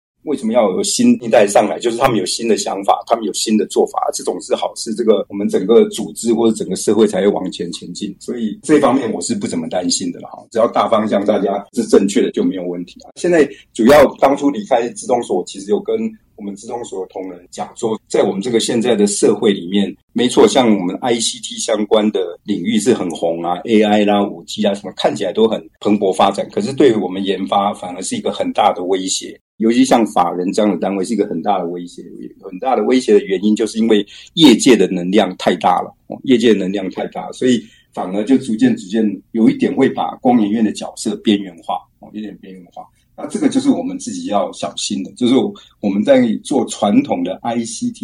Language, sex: Chinese, male